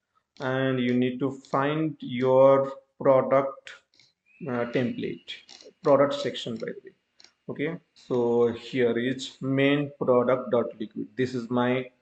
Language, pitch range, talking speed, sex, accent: English, 125-140 Hz, 120 wpm, male, Indian